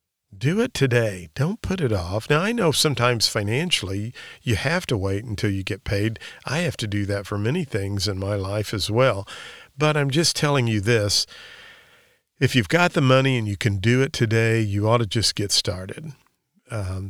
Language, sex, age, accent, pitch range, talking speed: English, male, 50-69, American, 105-135 Hz, 200 wpm